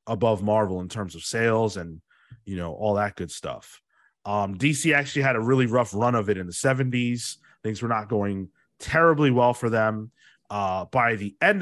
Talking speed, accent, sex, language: 195 wpm, American, male, English